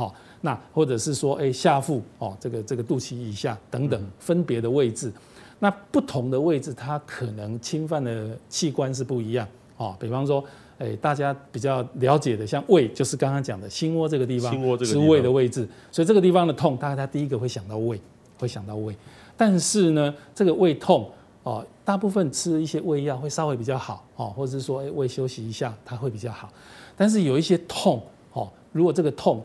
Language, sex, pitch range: Chinese, male, 120-155 Hz